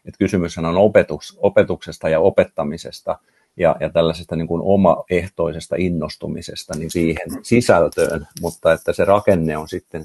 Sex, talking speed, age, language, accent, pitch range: male, 135 wpm, 50-69, Finnish, native, 80-90 Hz